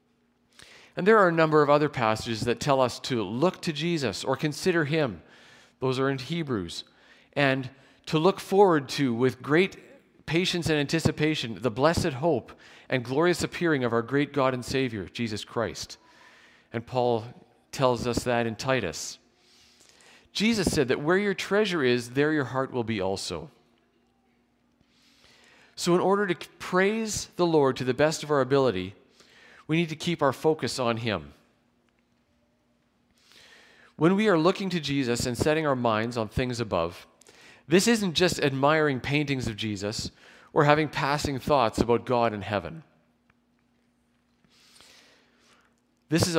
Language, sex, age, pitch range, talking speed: English, male, 50-69, 120-165 Hz, 150 wpm